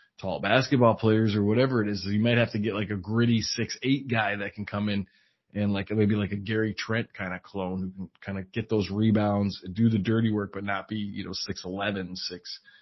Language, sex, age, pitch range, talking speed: English, male, 20-39, 100-115 Hz, 240 wpm